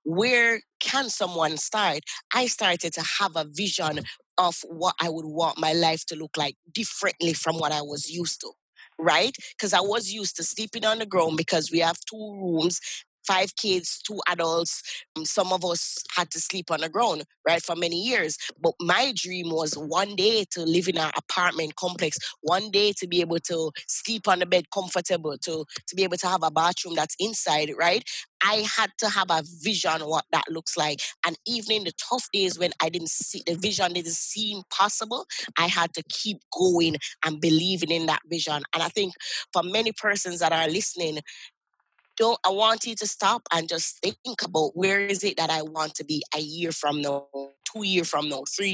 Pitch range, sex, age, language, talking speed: 160-200 Hz, female, 20-39, English, 205 wpm